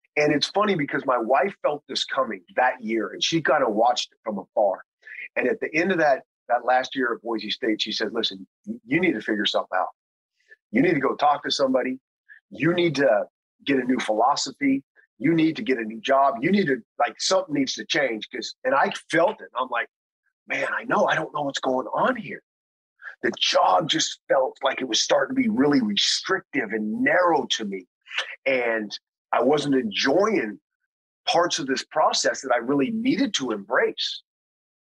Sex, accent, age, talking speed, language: male, American, 30-49, 200 wpm, English